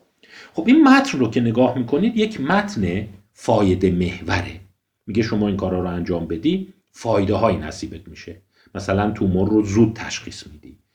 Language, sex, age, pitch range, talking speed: Persian, male, 50-69, 90-125 Hz, 150 wpm